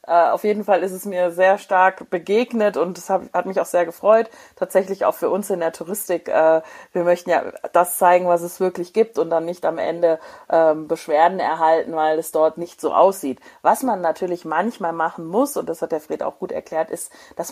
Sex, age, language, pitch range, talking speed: female, 30-49, German, 165-195 Hz, 225 wpm